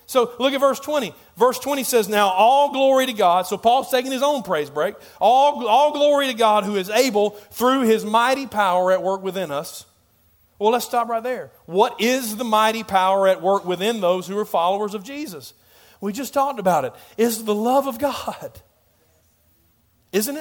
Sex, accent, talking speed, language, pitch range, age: male, American, 195 wpm, English, 185-240 Hz, 40-59